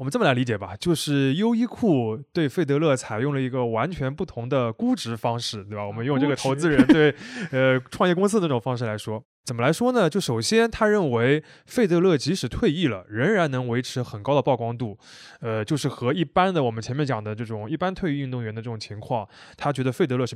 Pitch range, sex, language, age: 115-170 Hz, male, Chinese, 20-39